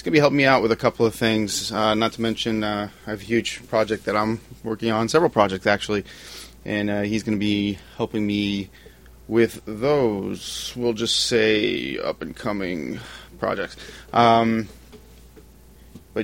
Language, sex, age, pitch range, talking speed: English, male, 30-49, 100-120 Hz, 175 wpm